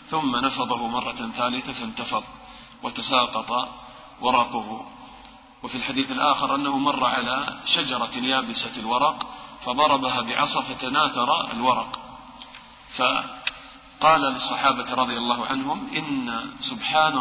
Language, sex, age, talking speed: English, male, 40-59, 95 wpm